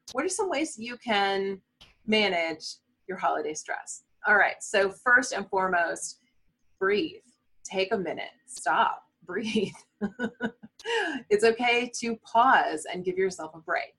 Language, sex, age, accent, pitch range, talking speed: English, female, 30-49, American, 185-235 Hz, 135 wpm